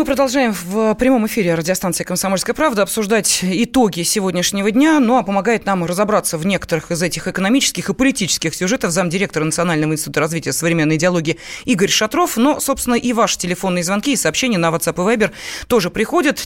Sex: female